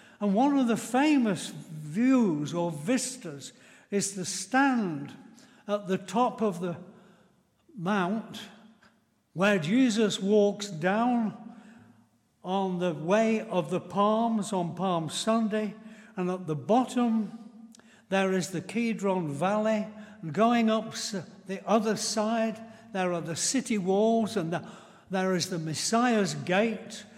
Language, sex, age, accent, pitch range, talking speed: English, male, 60-79, British, 185-230 Hz, 125 wpm